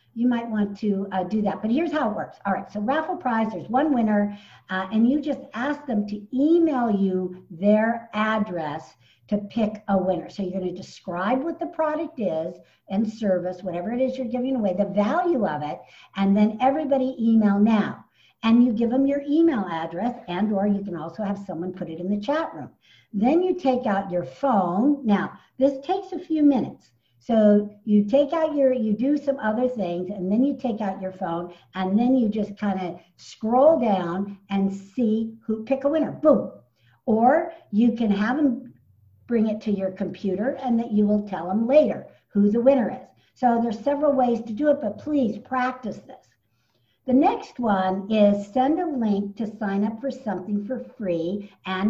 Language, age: English, 60-79